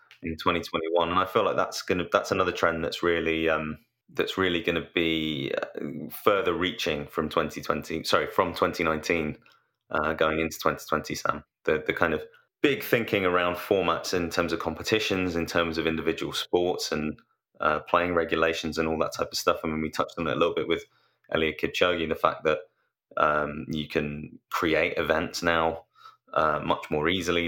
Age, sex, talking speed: 20-39, male, 185 wpm